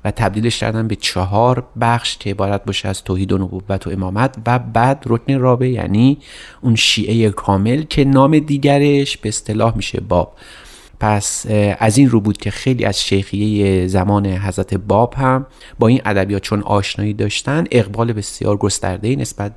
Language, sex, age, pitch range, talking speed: Persian, male, 30-49, 100-130 Hz, 165 wpm